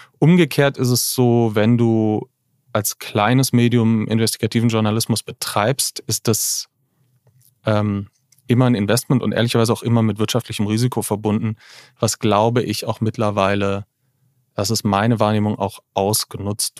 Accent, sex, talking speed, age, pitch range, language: German, male, 130 wpm, 40-59, 110-130 Hz, German